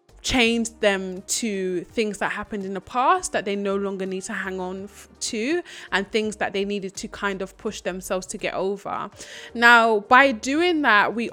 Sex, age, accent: female, 20-39, British